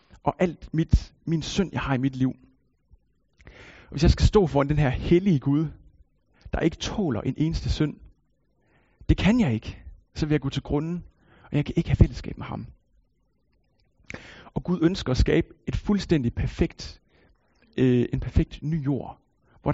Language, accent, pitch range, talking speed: Danish, native, 125-160 Hz, 175 wpm